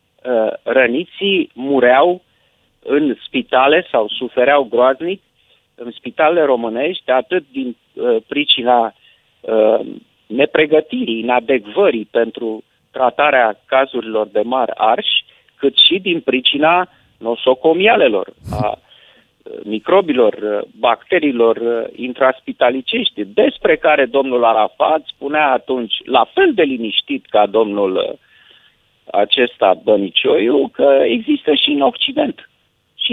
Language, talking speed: Romanian, 90 wpm